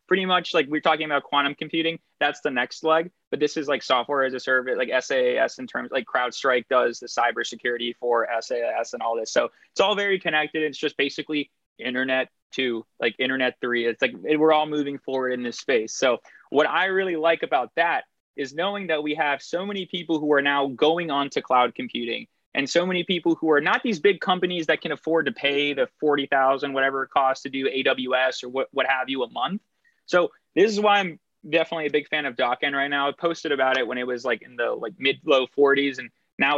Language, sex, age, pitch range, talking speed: English, male, 20-39, 135-170 Hz, 225 wpm